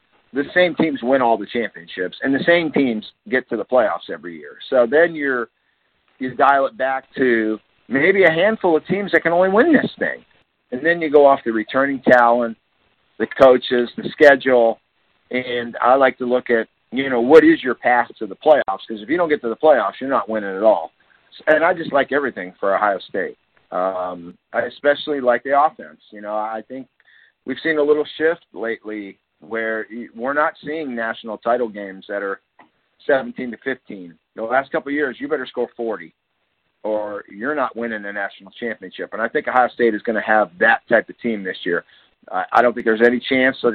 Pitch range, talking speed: 110-135 Hz, 205 wpm